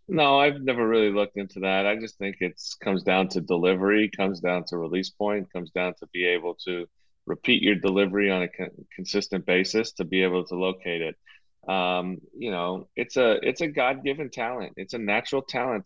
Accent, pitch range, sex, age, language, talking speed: American, 90-105 Hz, male, 30-49, English, 200 wpm